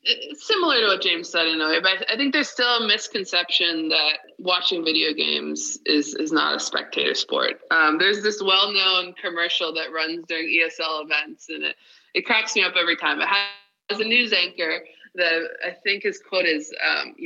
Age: 20-39